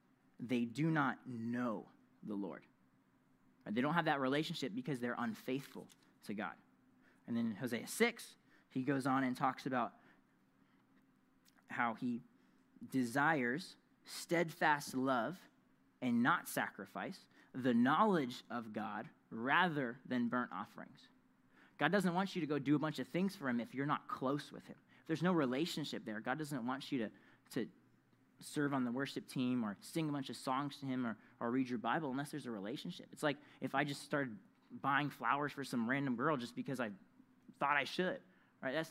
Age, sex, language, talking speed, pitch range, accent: 20-39, male, English, 175 wpm, 125-180 Hz, American